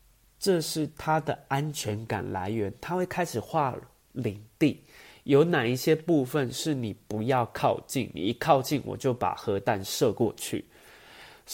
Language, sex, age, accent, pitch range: Chinese, male, 30-49, native, 110-145 Hz